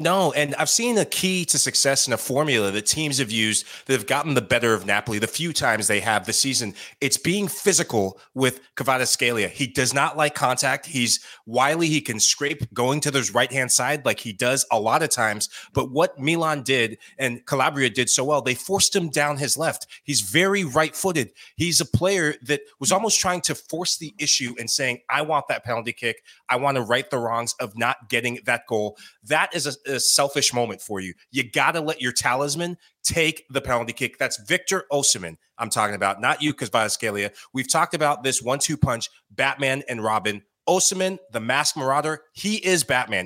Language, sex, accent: English, male, American